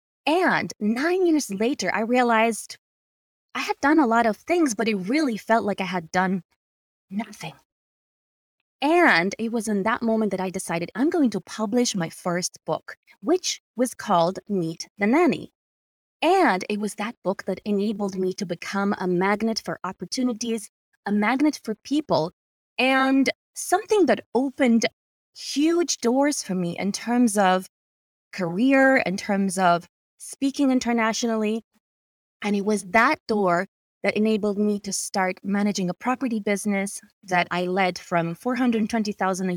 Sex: female